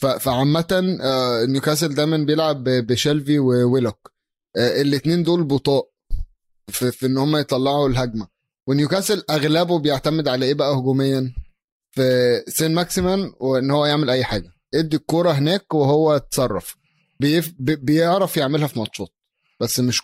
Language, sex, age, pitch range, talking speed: Arabic, male, 20-39, 125-160 Hz, 125 wpm